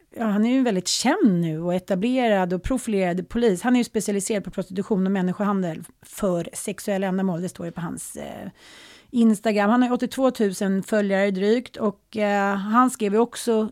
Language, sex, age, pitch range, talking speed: Swedish, female, 30-49, 190-230 Hz, 185 wpm